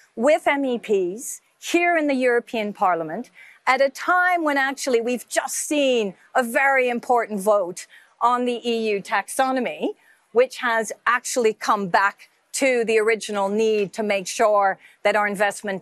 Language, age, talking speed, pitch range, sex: English, 50-69, 145 wpm, 215-275 Hz, female